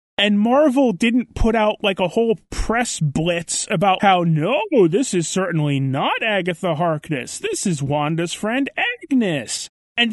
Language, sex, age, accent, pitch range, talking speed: English, male, 30-49, American, 175-230 Hz, 150 wpm